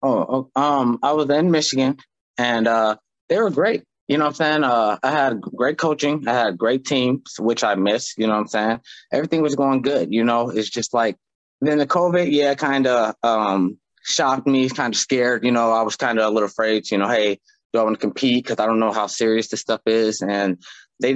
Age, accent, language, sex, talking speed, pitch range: 20-39, American, English, male, 235 wpm, 115-150 Hz